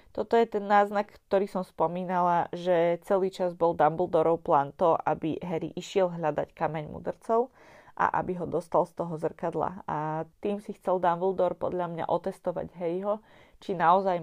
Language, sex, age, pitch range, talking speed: Slovak, female, 20-39, 165-190 Hz, 160 wpm